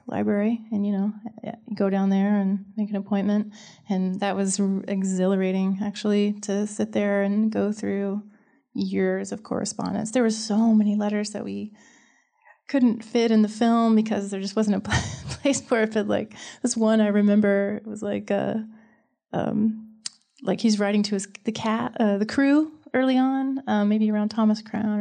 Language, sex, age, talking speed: English, female, 30-49, 180 wpm